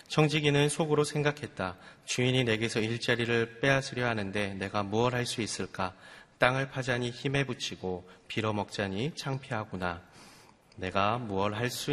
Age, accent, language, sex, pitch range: 30-49, native, Korean, male, 100-130 Hz